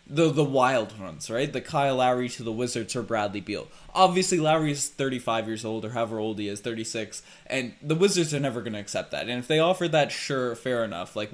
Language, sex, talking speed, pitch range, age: English, male, 235 wpm, 125-165 Hz, 10-29